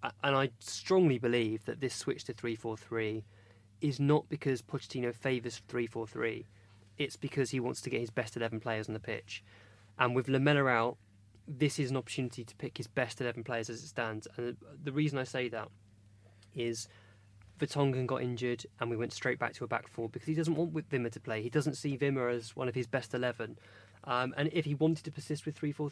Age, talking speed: 20-39, 220 wpm